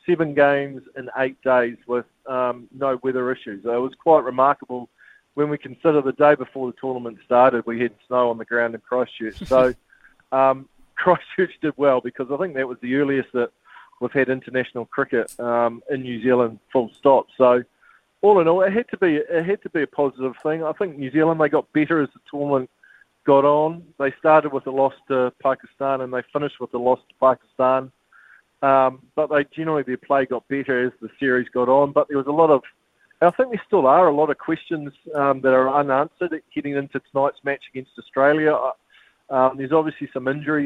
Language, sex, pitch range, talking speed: English, male, 125-145 Hz, 200 wpm